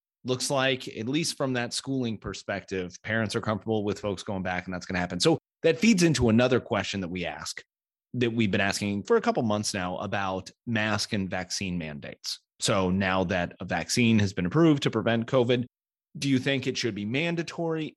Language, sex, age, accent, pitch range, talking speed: English, male, 30-49, American, 95-125 Hz, 205 wpm